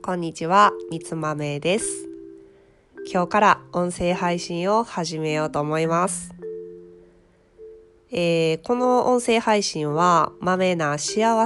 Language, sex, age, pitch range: Japanese, female, 20-39, 145-185 Hz